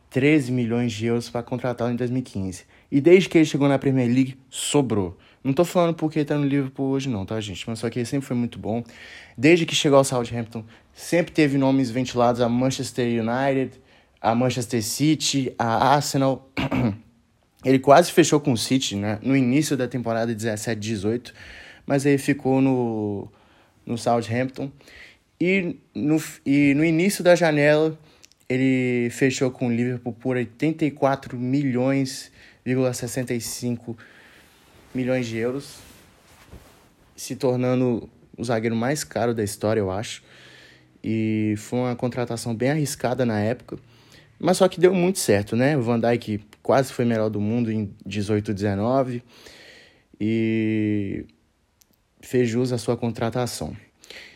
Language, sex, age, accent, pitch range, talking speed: Portuguese, male, 20-39, Brazilian, 110-135 Hz, 145 wpm